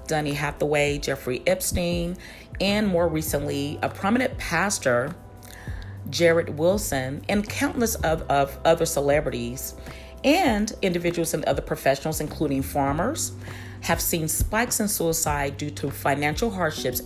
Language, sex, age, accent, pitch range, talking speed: English, female, 40-59, American, 120-155 Hz, 120 wpm